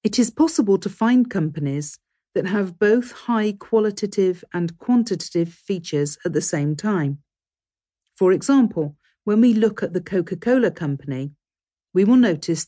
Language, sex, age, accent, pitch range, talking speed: English, female, 50-69, British, 150-210 Hz, 140 wpm